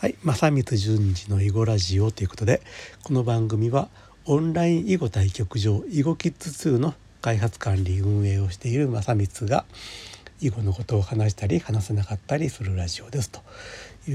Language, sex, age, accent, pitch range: Japanese, male, 60-79, native, 100-130 Hz